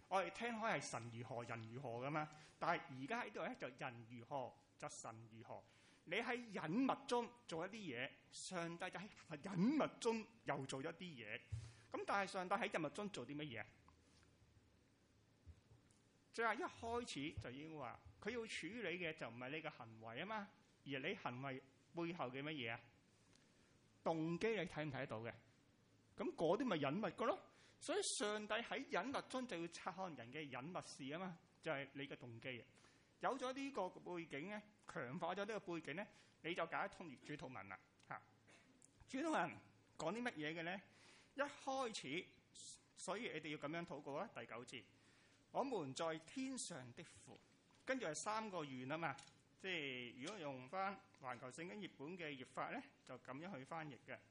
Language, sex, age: English, male, 30-49